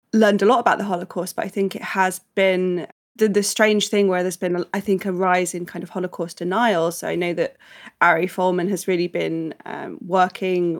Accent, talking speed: British, 215 wpm